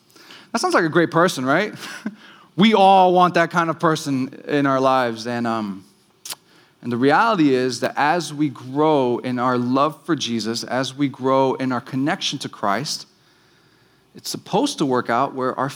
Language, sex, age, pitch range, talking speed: English, male, 30-49, 120-160 Hz, 180 wpm